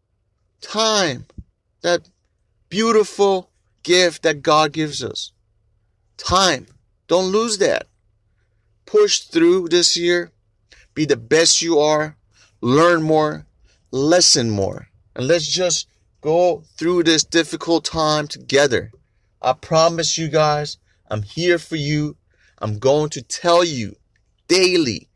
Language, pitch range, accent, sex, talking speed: English, 110-165 Hz, American, male, 115 wpm